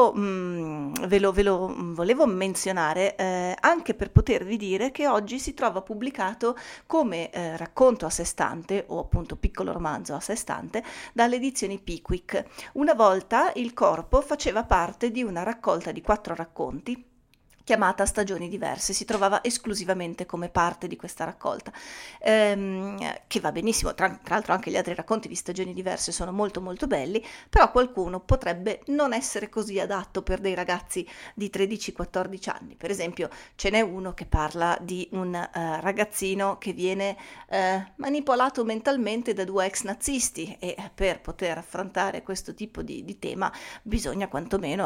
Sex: female